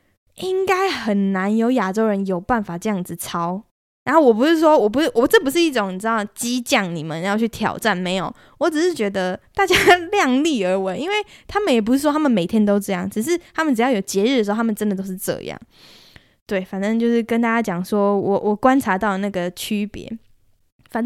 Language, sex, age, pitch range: Chinese, female, 10-29, 195-255 Hz